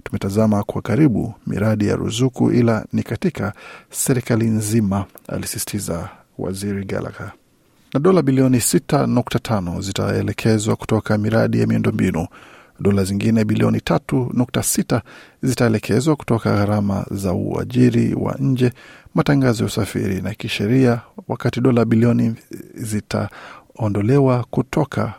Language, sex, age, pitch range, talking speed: Swahili, male, 50-69, 105-130 Hz, 100 wpm